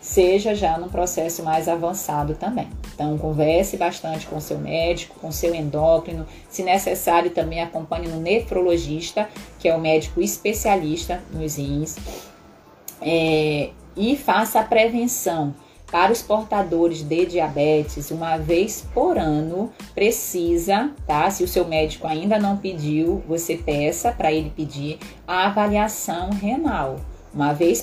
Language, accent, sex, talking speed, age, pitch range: Portuguese, Brazilian, female, 135 wpm, 20-39, 155-190 Hz